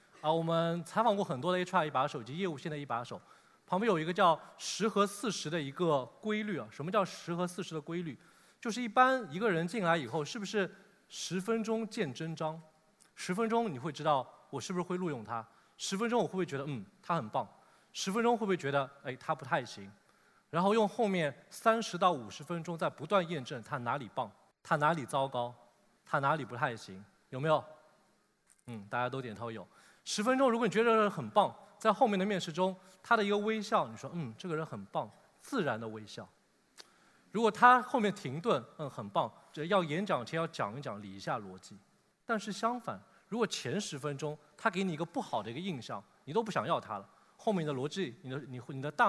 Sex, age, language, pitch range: male, 20-39, Chinese, 145-205 Hz